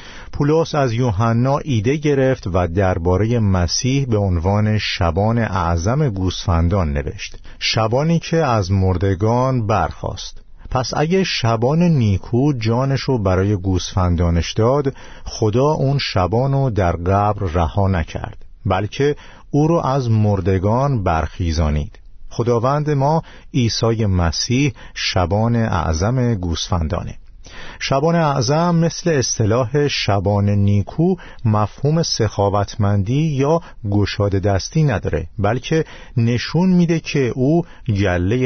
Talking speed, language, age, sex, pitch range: 100 wpm, Persian, 50-69, male, 95-135 Hz